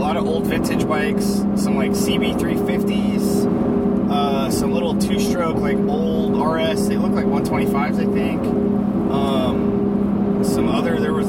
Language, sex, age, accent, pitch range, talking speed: English, male, 20-39, American, 205-210 Hz, 145 wpm